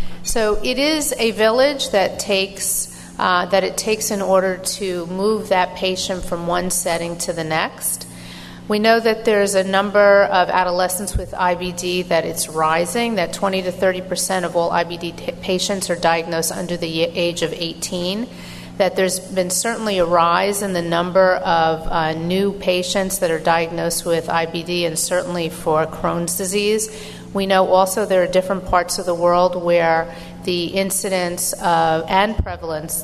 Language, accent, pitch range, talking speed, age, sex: English, American, 165-190 Hz, 165 wpm, 40-59, female